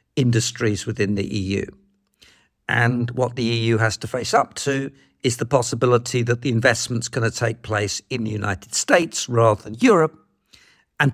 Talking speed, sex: 165 wpm, male